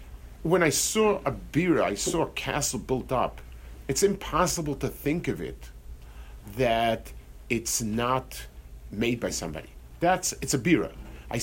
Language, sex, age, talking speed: English, male, 50-69, 145 wpm